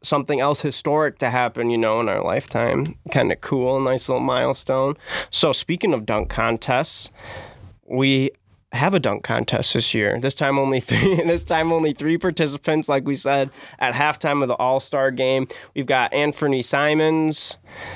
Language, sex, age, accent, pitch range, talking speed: English, male, 20-39, American, 125-150 Hz, 165 wpm